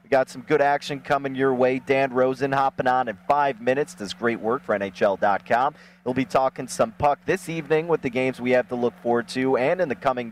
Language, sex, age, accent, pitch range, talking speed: English, male, 30-49, American, 125-145 Hz, 240 wpm